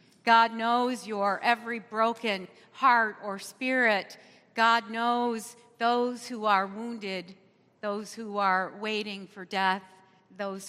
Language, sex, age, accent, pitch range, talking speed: English, female, 50-69, American, 195-250 Hz, 120 wpm